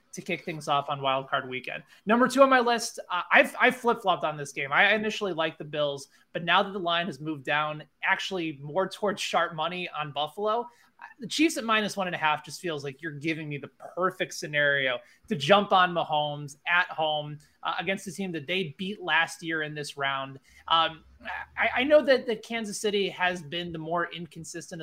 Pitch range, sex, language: 150-205 Hz, male, English